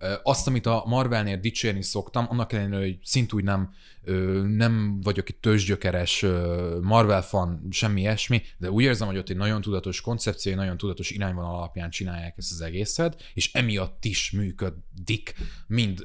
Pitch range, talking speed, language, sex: 95-115 Hz, 150 wpm, Hungarian, male